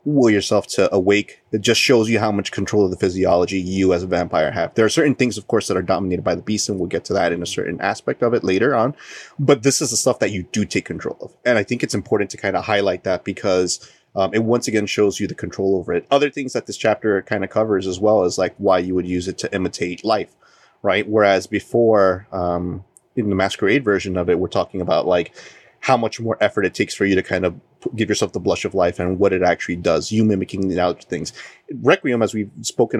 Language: English